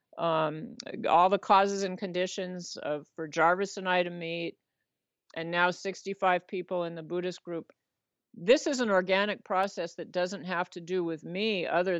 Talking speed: 170 wpm